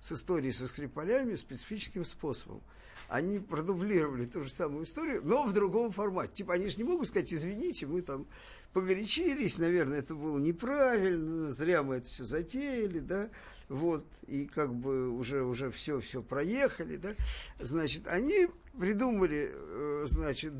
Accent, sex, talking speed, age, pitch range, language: native, male, 145 wpm, 50-69, 150-230 Hz, Russian